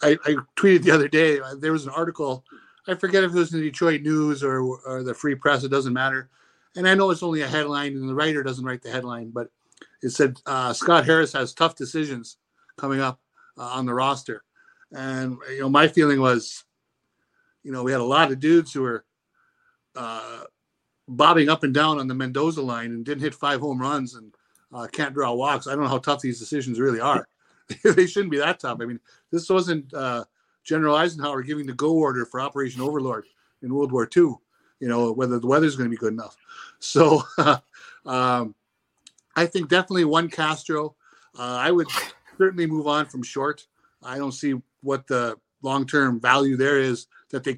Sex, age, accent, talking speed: male, 60-79, American, 200 wpm